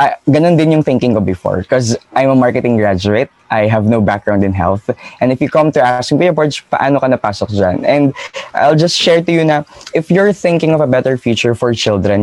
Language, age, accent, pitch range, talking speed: Filipino, 20-39, native, 105-140 Hz, 200 wpm